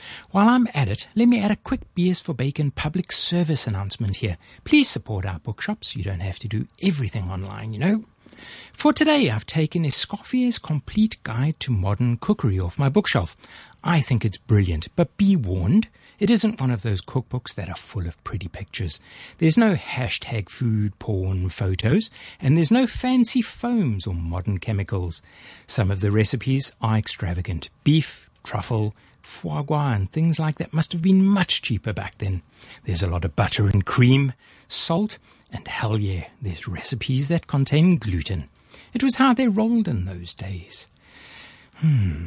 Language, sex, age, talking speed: English, male, 60-79, 170 wpm